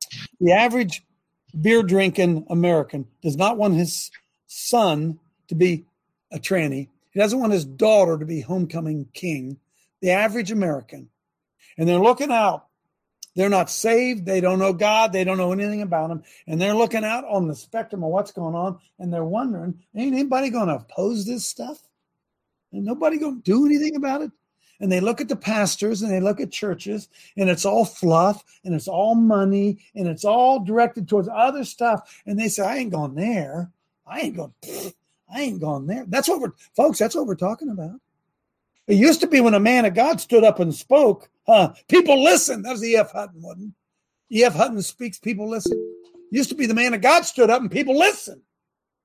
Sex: male